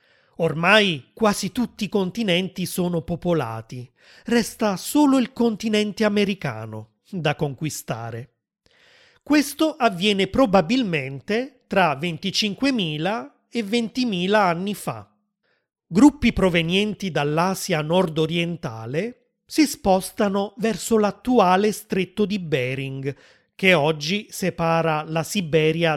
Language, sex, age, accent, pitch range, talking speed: Italian, male, 30-49, native, 165-220 Hz, 90 wpm